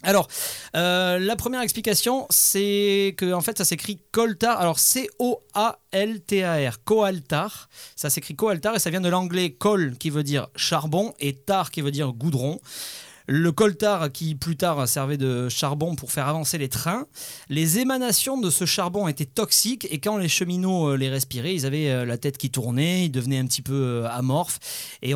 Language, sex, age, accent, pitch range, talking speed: French, male, 30-49, French, 140-195 Hz, 180 wpm